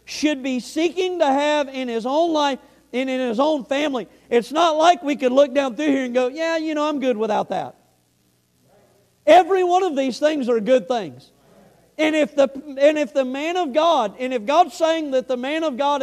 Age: 50-69